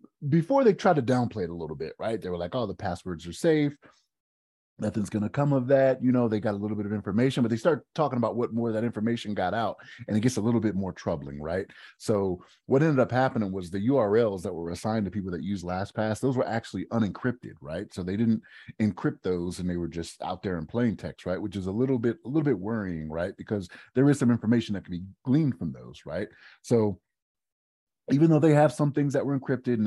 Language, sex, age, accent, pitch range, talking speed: English, male, 30-49, American, 90-120 Hz, 245 wpm